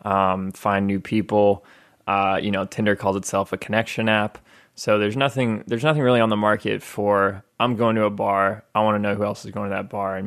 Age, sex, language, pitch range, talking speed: 20-39, male, English, 100-110 Hz, 235 wpm